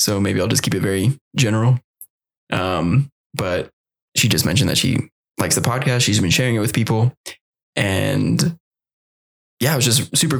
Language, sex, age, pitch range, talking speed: English, male, 20-39, 100-130 Hz, 175 wpm